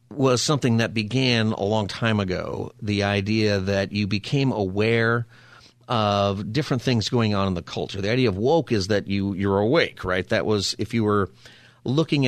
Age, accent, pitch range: 40-59, American, 100-120 Hz